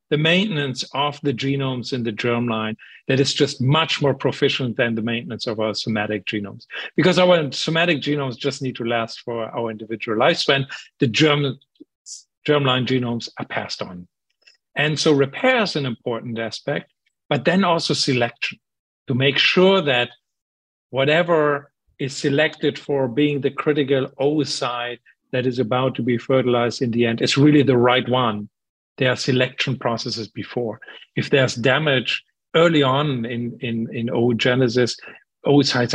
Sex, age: male, 50-69